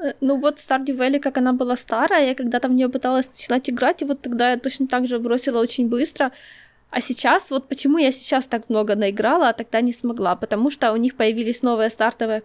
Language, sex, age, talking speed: Ukrainian, female, 20-39, 220 wpm